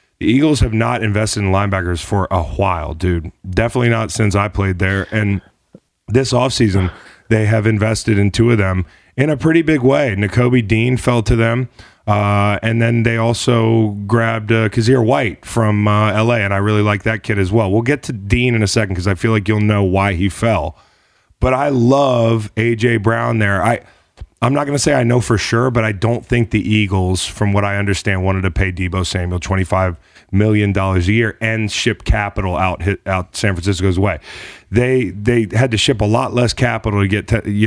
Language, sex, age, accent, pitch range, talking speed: English, male, 30-49, American, 100-115 Hz, 210 wpm